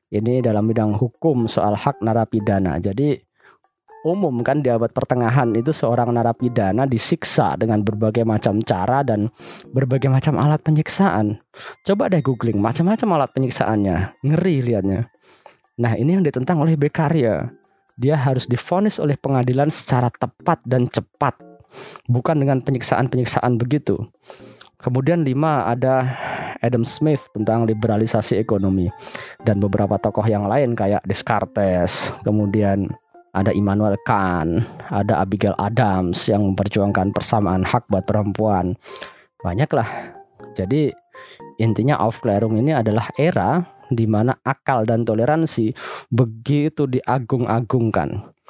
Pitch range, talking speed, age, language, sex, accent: 110-140 Hz, 120 wpm, 20-39, Indonesian, male, native